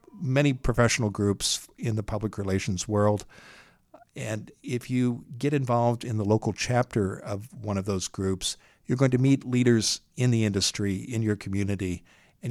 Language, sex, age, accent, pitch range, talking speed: English, male, 60-79, American, 100-120 Hz, 165 wpm